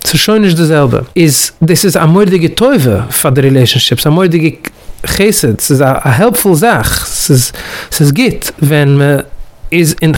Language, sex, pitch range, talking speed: English, male, 135-175 Hz, 155 wpm